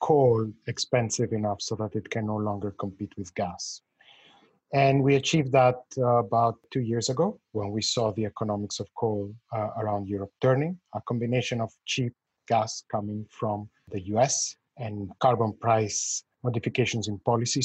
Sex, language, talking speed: male, English, 160 wpm